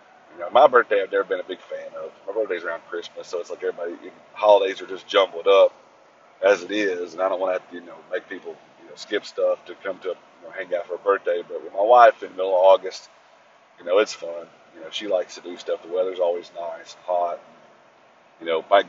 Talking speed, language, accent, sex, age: 260 wpm, English, American, male, 40-59